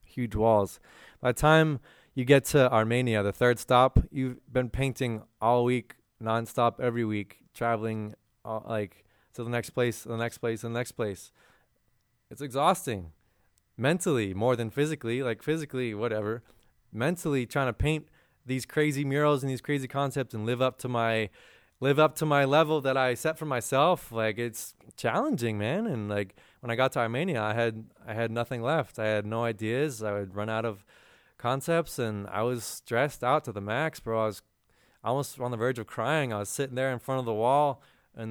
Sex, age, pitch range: male, 20-39, 110-135 Hz